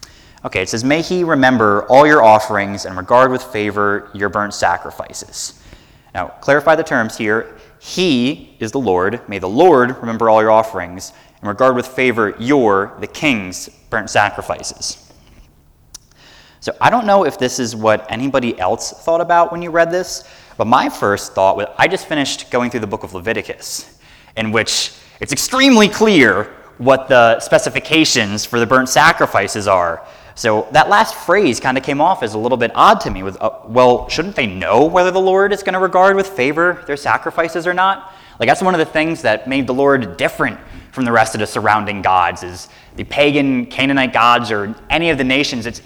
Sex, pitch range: male, 110-160 Hz